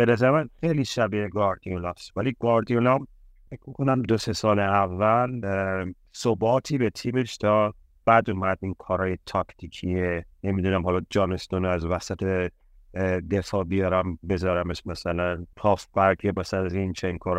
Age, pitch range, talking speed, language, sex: 30-49, 90-105 Hz, 135 wpm, Persian, male